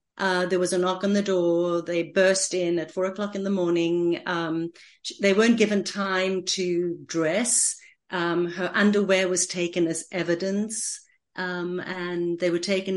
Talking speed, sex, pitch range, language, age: 165 wpm, female, 170-210 Hz, English, 40-59